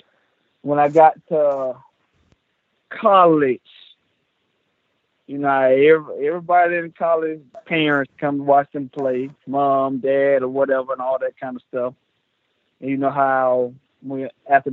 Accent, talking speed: American, 125 wpm